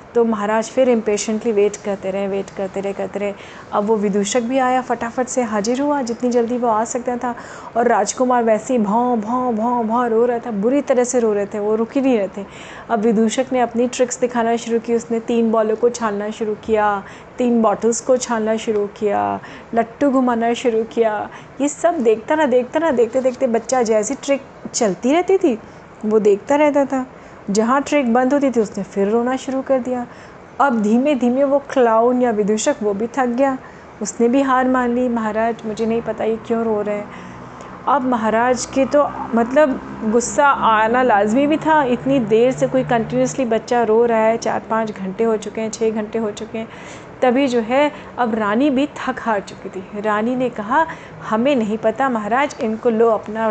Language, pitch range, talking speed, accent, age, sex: Hindi, 220-255 Hz, 200 wpm, native, 30-49, female